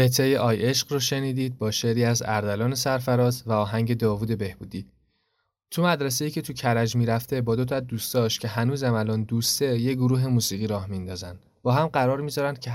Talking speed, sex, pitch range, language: 185 wpm, male, 105-130 Hz, Persian